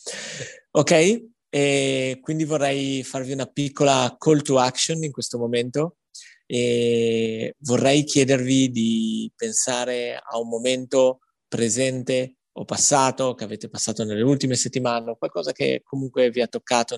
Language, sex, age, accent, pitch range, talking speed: Italian, male, 30-49, native, 125-145 Hz, 125 wpm